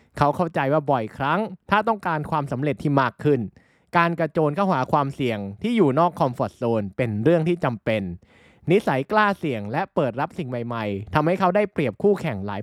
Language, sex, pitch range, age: Thai, male, 125-180 Hz, 20-39